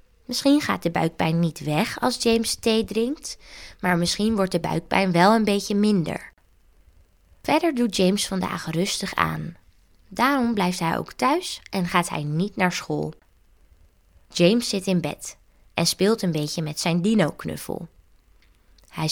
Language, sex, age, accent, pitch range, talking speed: Dutch, female, 20-39, Dutch, 130-220 Hz, 150 wpm